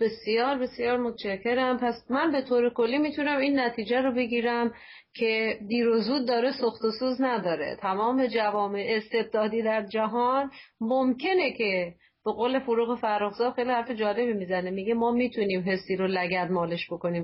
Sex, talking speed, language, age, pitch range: female, 155 wpm, Persian, 40-59, 195-245 Hz